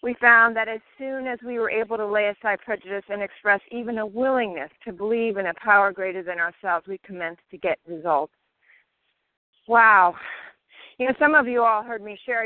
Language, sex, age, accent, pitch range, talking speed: English, female, 40-59, American, 195-240 Hz, 195 wpm